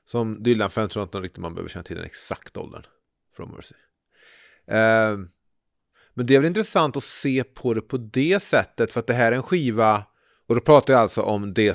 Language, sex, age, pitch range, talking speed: Swedish, male, 30-49, 100-130 Hz, 190 wpm